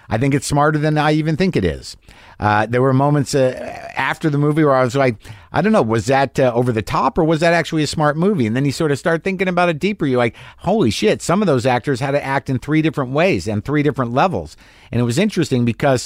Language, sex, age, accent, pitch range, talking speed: English, male, 50-69, American, 115-150 Hz, 270 wpm